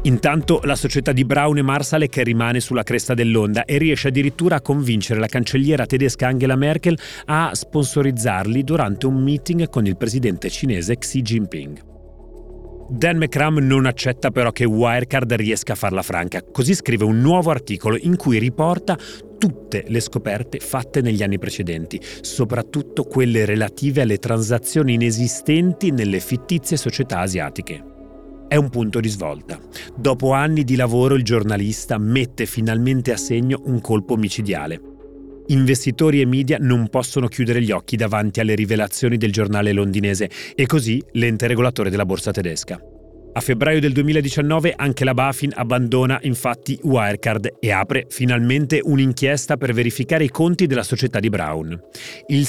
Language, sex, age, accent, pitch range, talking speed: Italian, male, 40-59, native, 110-140 Hz, 150 wpm